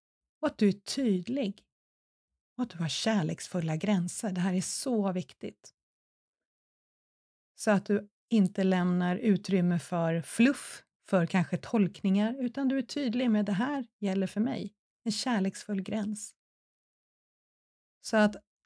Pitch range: 180-220 Hz